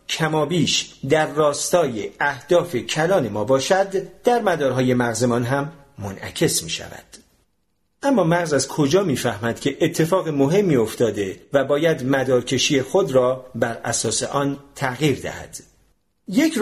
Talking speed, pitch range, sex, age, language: 125 wpm, 125-170 Hz, male, 40-59, Persian